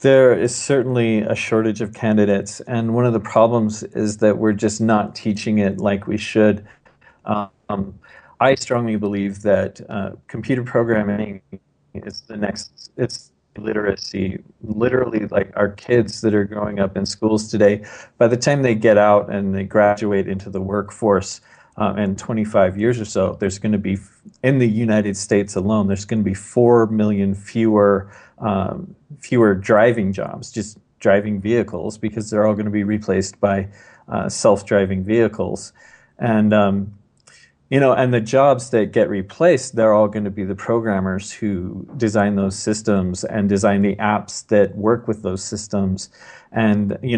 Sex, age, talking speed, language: male, 40-59, 165 wpm, English